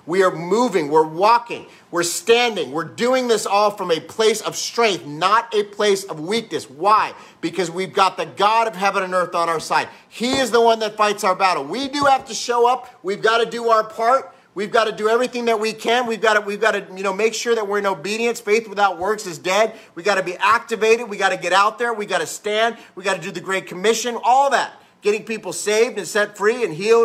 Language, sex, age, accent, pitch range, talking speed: English, male, 30-49, American, 175-230 Hz, 250 wpm